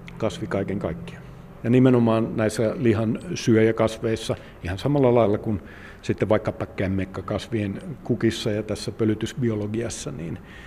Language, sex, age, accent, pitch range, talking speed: Finnish, male, 50-69, native, 105-130 Hz, 110 wpm